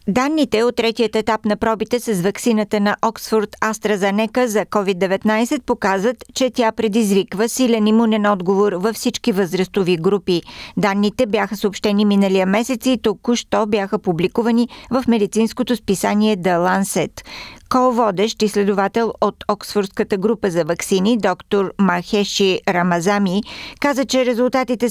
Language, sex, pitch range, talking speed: Bulgarian, female, 185-225 Hz, 125 wpm